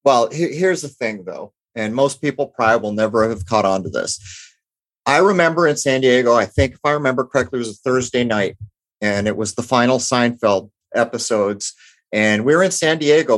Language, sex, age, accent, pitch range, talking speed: English, male, 30-49, American, 110-145 Hz, 200 wpm